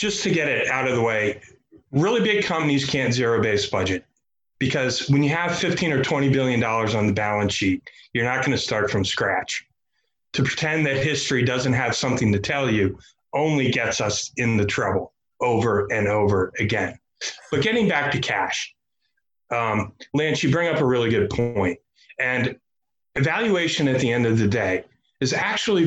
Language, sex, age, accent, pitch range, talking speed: English, male, 30-49, American, 120-180 Hz, 180 wpm